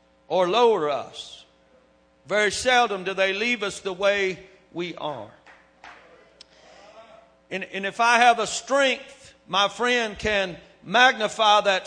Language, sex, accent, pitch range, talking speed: English, male, American, 155-220 Hz, 125 wpm